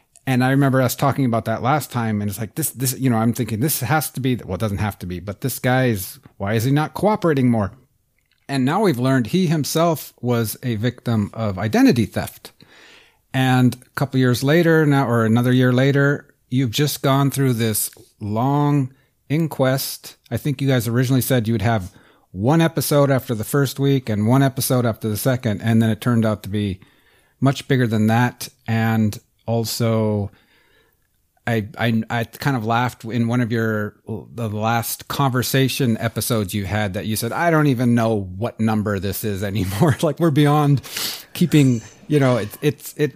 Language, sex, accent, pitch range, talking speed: English, male, American, 110-135 Hz, 190 wpm